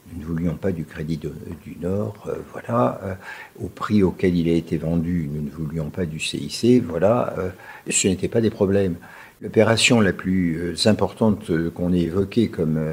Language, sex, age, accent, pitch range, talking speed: French, male, 60-79, French, 85-105 Hz, 180 wpm